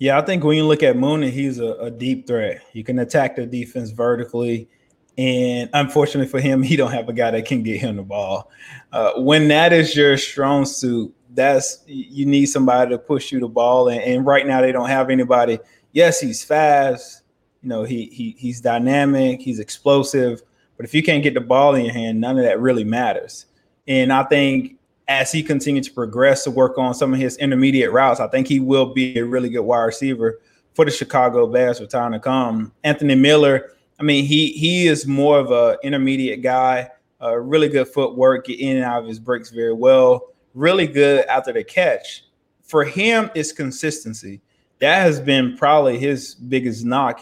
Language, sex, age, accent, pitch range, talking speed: English, male, 20-39, American, 125-145 Hz, 200 wpm